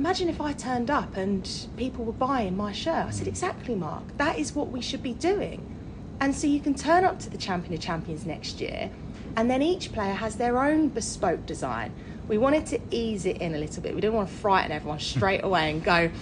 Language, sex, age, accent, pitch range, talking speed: English, female, 30-49, British, 195-265 Hz, 235 wpm